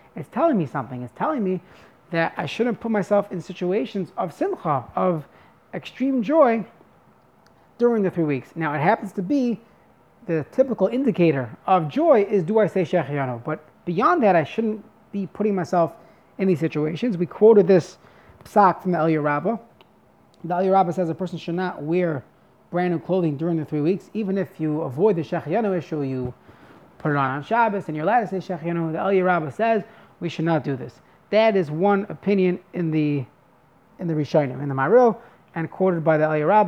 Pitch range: 155-200 Hz